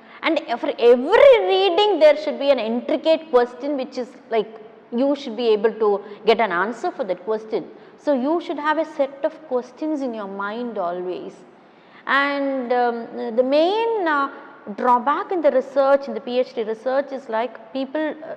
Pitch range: 235-315 Hz